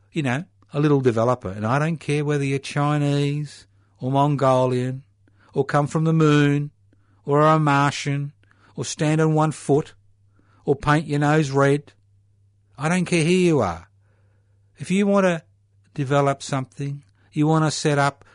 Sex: male